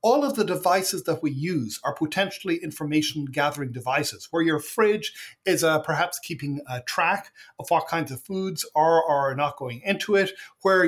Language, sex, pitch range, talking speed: English, male, 150-200 Hz, 190 wpm